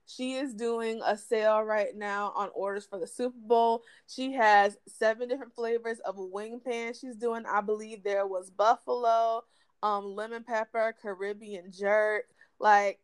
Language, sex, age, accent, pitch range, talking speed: English, female, 20-39, American, 205-250 Hz, 160 wpm